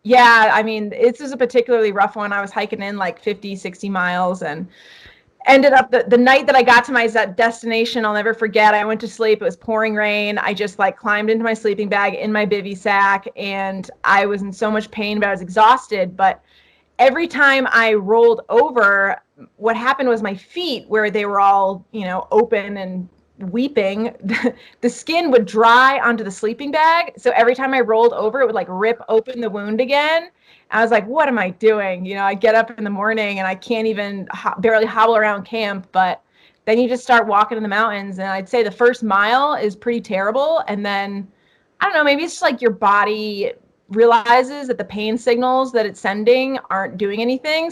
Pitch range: 200-245 Hz